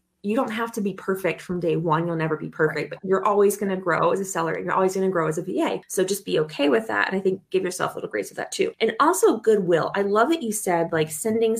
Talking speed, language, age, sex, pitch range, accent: 300 wpm, English, 20-39, female, 175-215 Hz, American